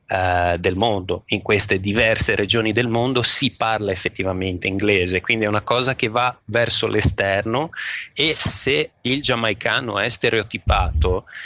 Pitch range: 100-125 Hz